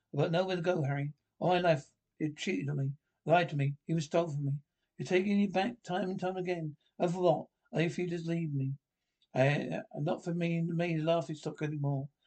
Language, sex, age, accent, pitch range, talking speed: English, male, 60-79, British, 145-175 Hz, 235 wpm